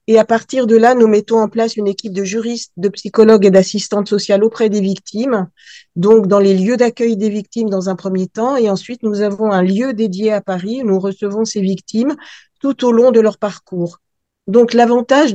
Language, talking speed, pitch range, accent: French, 210 wpm, 195-230 Hz, French